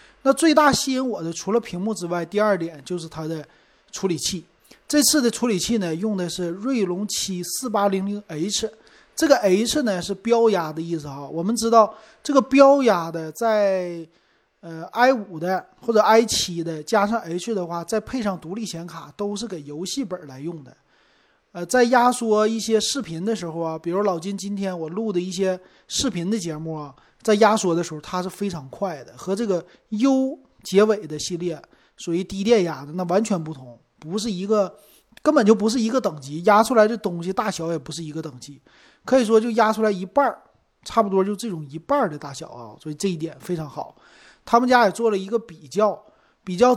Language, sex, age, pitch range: Chinese, male, 30-49, 165-220 Hz